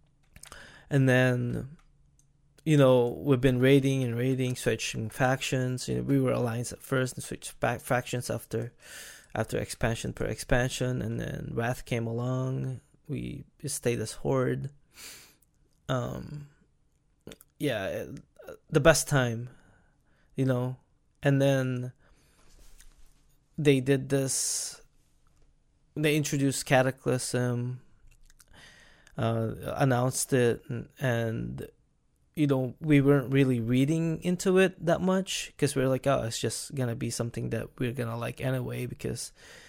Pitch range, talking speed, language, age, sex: 120-140 Hz, 125 wpm, English, 20-39, male